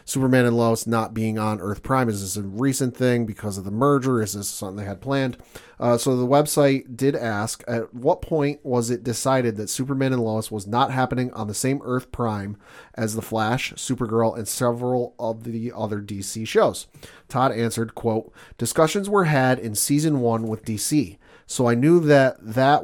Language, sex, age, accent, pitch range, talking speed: English, male, 30-49, American, 110-135 Hz, 195 wpm